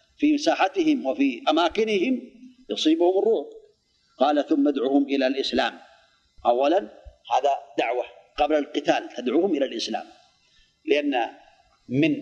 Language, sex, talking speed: Arabic, male, 105 wpm